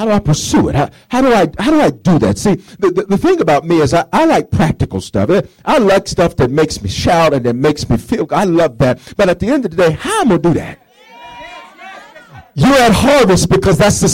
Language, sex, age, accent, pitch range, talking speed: English, male, 50-69, American, 125-185 Hz, 270 wpm